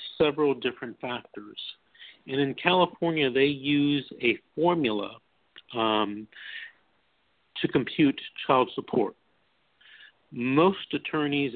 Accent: American